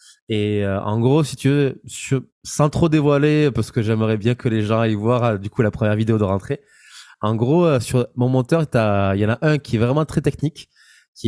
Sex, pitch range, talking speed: male, 105-130 Hz, 240 wpm